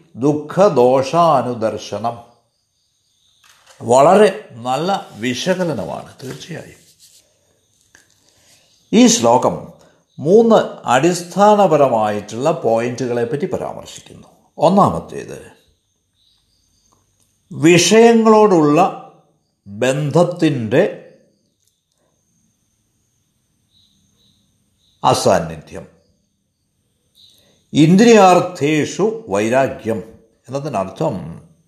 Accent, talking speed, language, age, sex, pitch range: native, 35 wpm, Malayalam, 60-79, male, 100-160 Hz